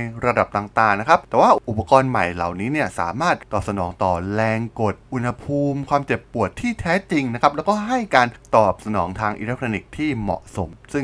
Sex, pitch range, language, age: male, 100-130 Hz, Thai, 20-39